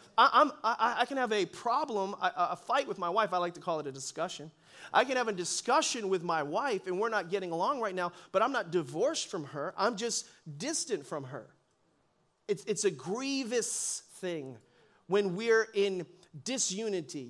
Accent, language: American, English